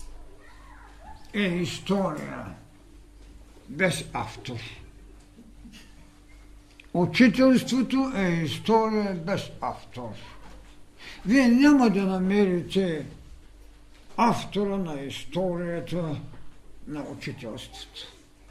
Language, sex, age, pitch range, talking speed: Bulgarian, male, 60-79, 135-205 Hz, 60 wpm